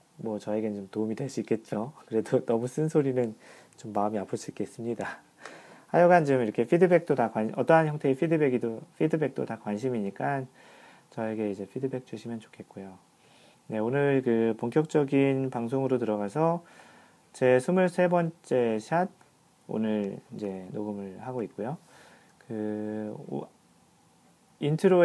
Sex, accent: male, native